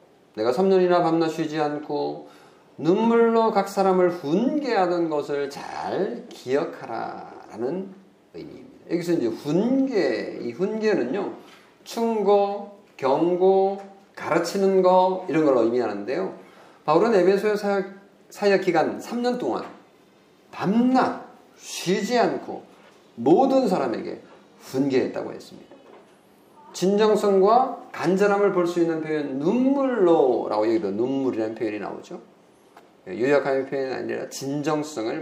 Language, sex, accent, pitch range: Korean, male, native, 175-225 Hz